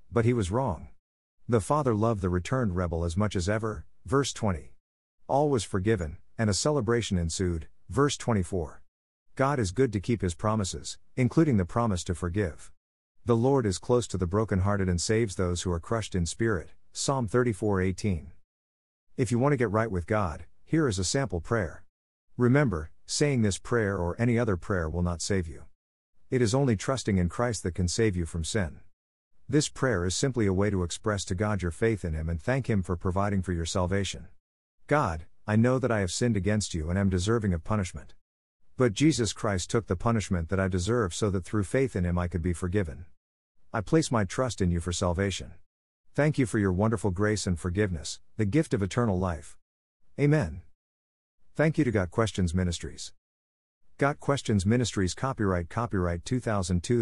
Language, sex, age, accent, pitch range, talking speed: English, male, 50-69, American, 85-115 Hz, 190 wpm